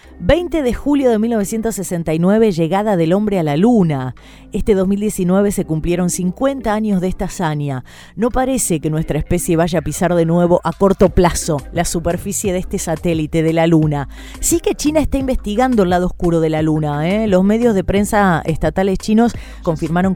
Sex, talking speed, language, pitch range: female, 175 wpm, Spanish, 155-205 Hz